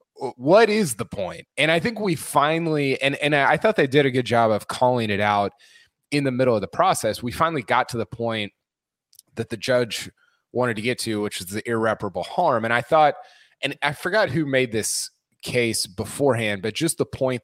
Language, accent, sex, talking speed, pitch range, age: English, American, male, 210 wpm, 110-145 Hz, 20-39